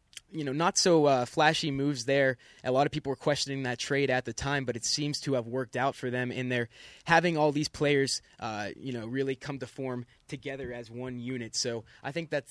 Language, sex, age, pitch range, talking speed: English, male, 20-39, 125-145 Hz, 235 wpm